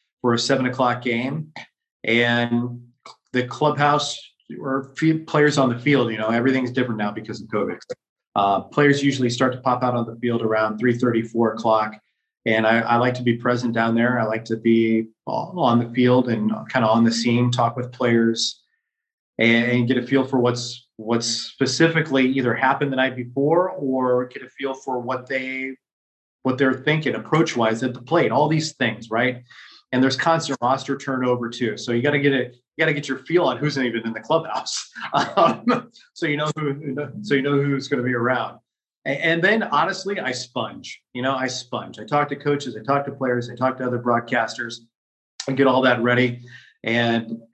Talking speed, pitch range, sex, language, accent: 200 wpm, 120-140 Hz, male, English, American